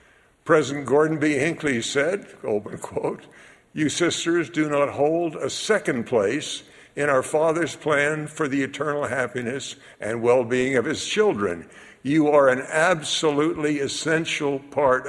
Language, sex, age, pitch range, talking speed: English, male, 60-79, 125-155 Hz, 125 wpm